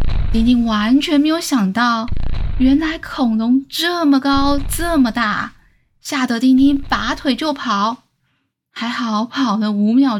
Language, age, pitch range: Chinese, 10-29, 215-275 Hz